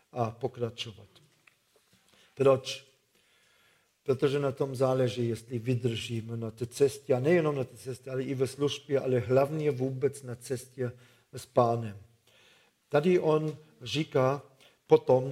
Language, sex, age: Czech, male, 50-69